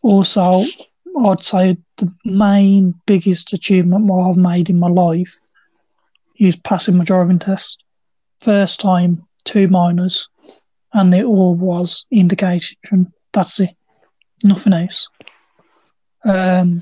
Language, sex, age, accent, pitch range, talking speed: English, male, 20-39, British, 180-205 Hz, 115 wpm